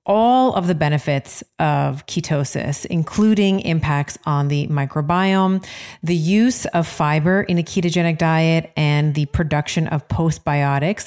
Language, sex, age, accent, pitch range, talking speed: English, female, 30-49, American, 150-190 Hz, 130 wpm